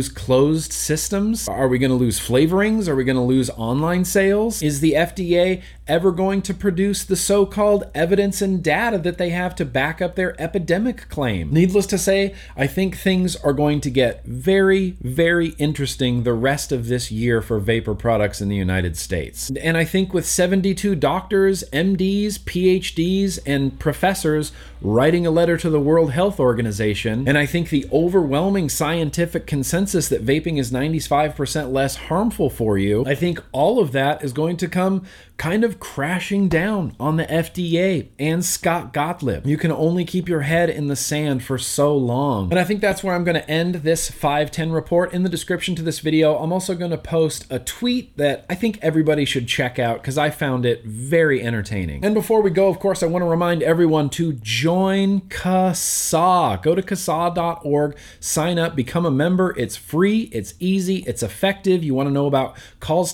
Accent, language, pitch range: American, English, 135-185 Hz